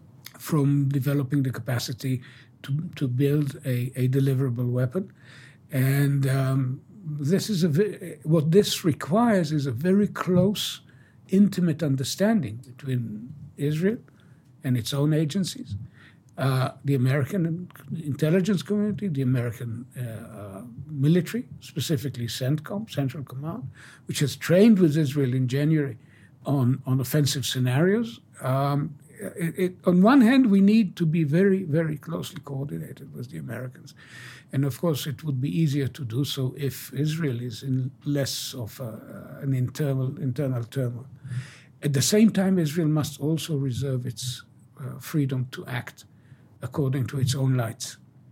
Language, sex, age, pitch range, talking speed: English, male, 60-79, 130-155 Hz, 140 wpm